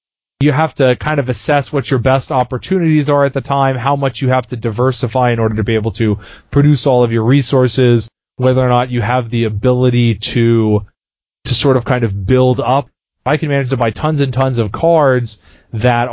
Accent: American